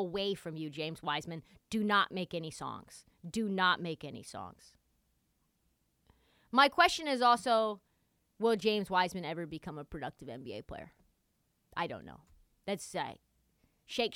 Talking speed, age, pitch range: 145 wpm, 30-49, 160-250 Hz